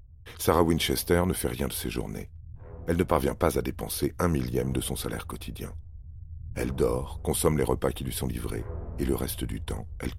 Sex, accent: male, French